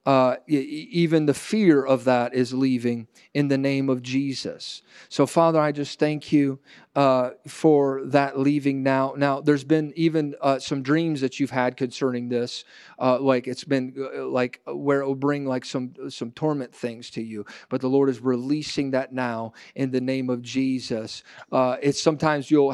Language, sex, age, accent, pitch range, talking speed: English, male, 40-59, American, 130-145 Hz, 180 wpm